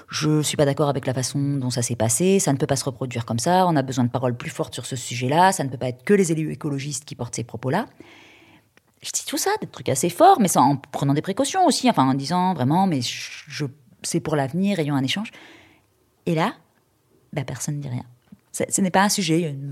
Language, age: French, 20-39